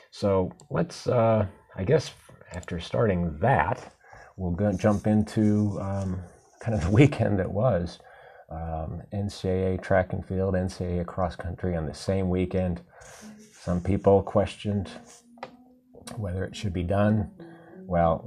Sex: male